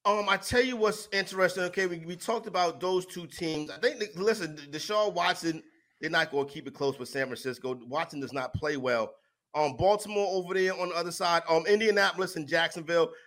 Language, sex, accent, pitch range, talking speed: English, male, American, 140-185 Hz, 205 wpm